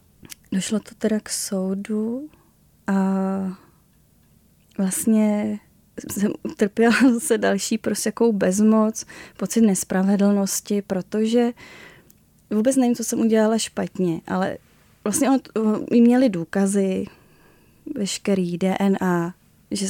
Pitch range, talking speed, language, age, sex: 195-220 Hz, 95 wpm, Czech, 10-29, female